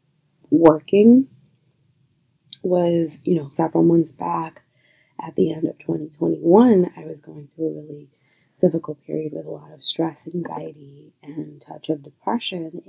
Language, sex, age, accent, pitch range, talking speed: English, female, 20-39, American, 155-195 Hz, 145 wpm